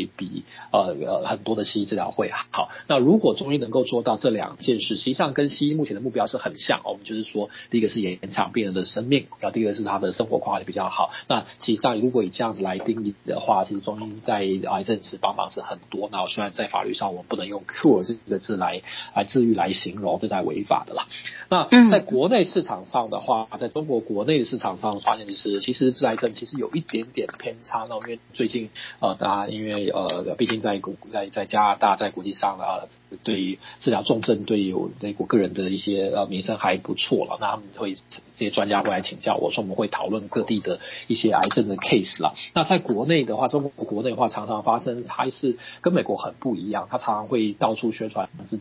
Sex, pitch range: male, 100-125 Hz